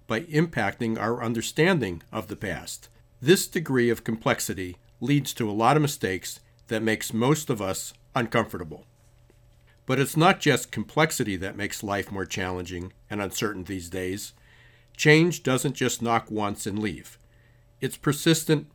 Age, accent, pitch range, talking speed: 50-69, American, 110-130 Hz, 145 wpm